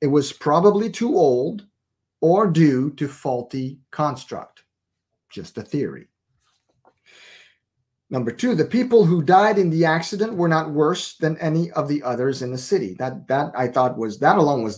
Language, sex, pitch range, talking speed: English, male, 120-165 Hz, 165 wpm